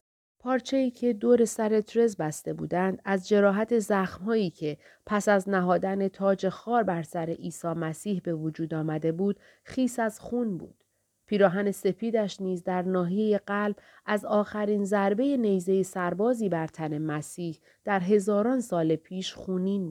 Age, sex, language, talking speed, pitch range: 30-49, female, Persian, 140 wpm, 180-215 Hz